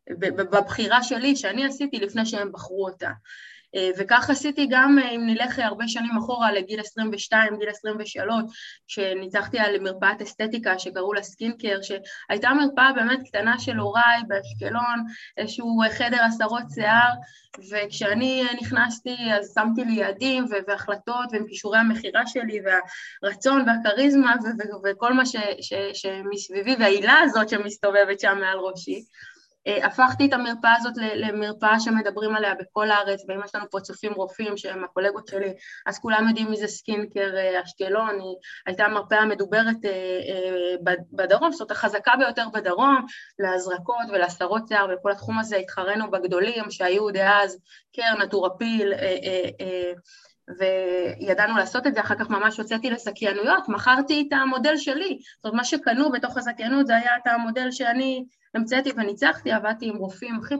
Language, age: Hebrew, 20-39